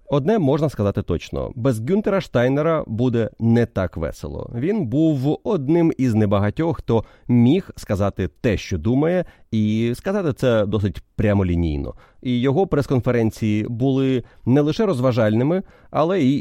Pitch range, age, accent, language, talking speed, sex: 95-130 Hz, 30-49, native, Ukrainian, 135 wpm, male